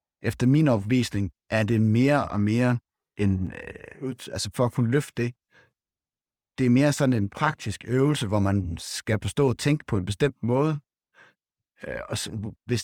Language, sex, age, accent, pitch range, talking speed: Danish, male, 60-79, native, 100-130 Hz, 155 wpm